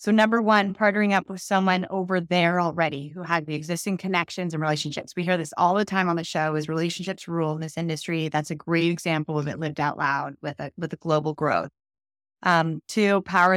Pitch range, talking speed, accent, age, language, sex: 155-185 Hz, 220 wpm, American, 20-39, English, female